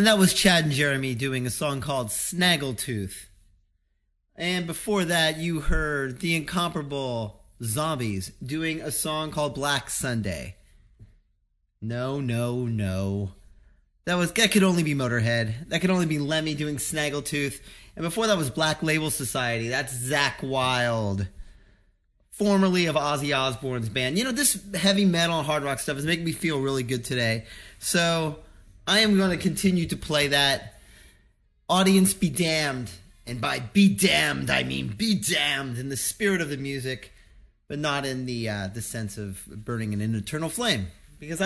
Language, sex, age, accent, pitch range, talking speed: English, male, 30-49, American, 115-170 Hz, 165 wpm